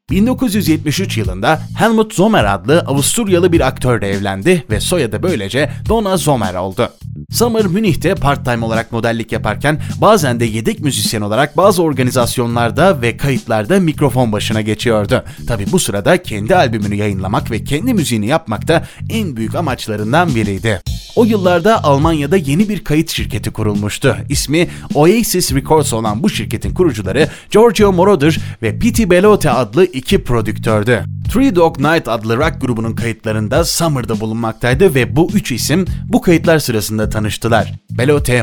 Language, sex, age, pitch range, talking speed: Turkish, male, 30-49, 110-175 Hz, 140 wpm